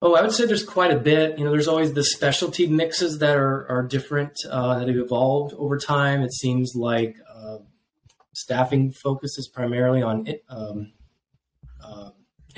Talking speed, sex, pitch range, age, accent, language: 170 wpm, male, 120-145 Hz, 20-39, American, English